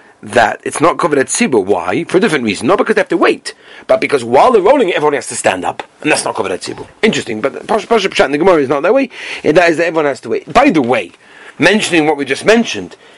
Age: 40-59